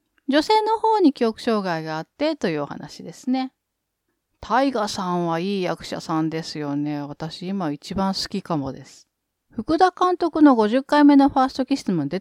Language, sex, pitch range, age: Japanese, female, 170-285 Hz, 40-59